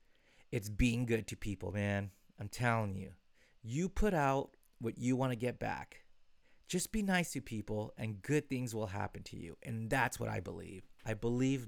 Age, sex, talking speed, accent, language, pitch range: 30-49, male, 190 wpm, American, English, 105-130 Hz